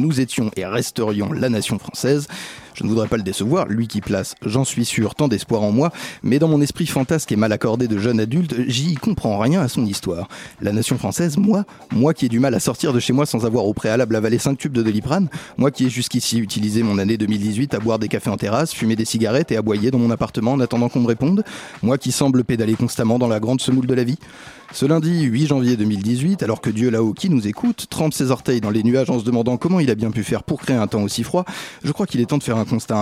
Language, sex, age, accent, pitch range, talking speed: French, male, 30-49, French, 110-135 Hz, 260 wpm